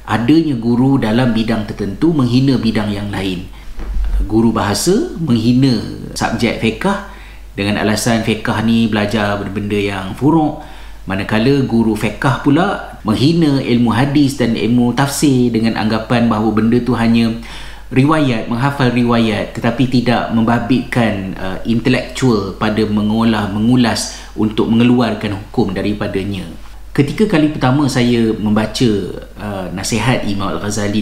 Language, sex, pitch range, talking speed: Malay, male, 105-125 Hz, 115 wpm